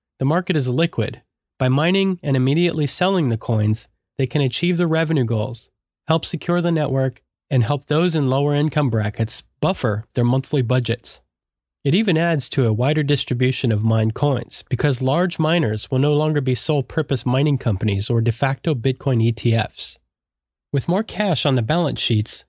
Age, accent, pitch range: 20-39, American, 120-155 Hz